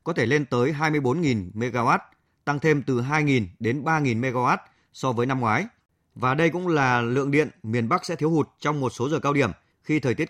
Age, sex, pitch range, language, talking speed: 20-39, male, 120-150 Hz, Vietnamese, 215 wpm